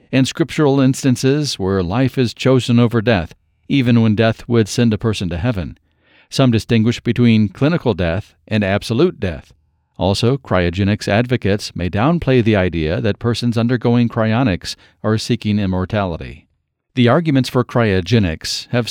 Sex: male